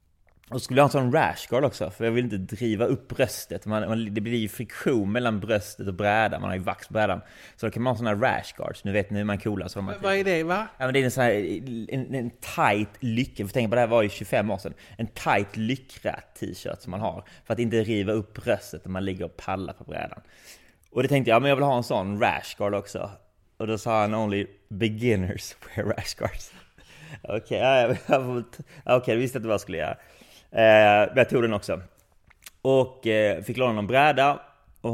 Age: 20-39